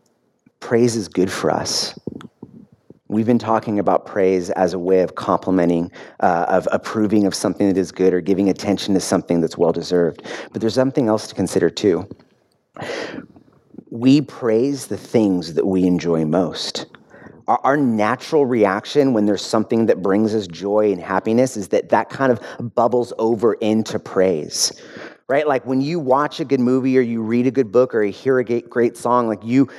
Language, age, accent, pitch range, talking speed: English, 30-49, American, 100-125 Hz, 180 wpm